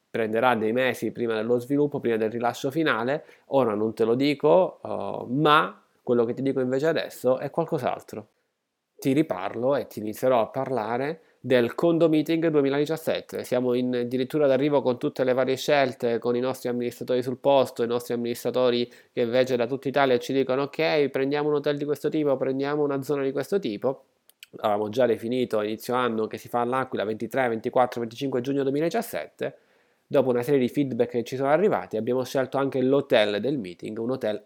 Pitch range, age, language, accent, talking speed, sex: 115-135 Hz, 20-39, Italian, native, 185 wpm, male